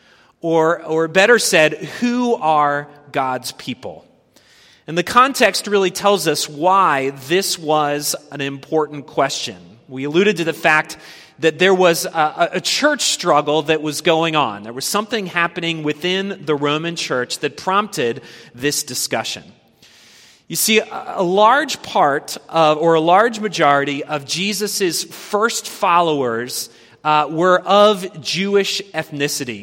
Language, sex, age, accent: English, male, 30-49, American